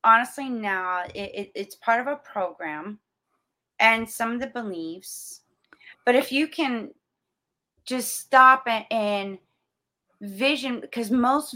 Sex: female